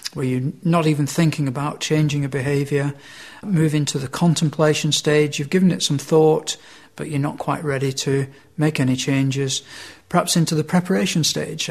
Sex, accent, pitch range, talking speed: male, British, 140-160 Hz, 170 wpm